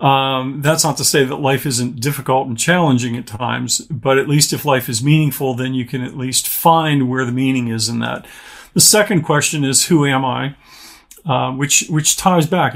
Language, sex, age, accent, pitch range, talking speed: English, male, 50-69, American, 130-150 Hz, 205 wpm